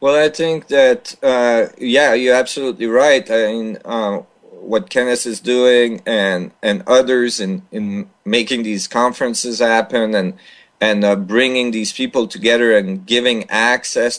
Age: 40-59